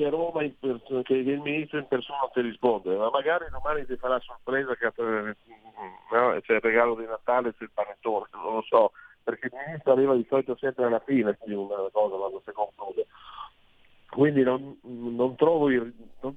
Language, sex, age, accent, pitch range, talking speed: Italian, male, 40-59, native, 115-165 Hz, 170 wpm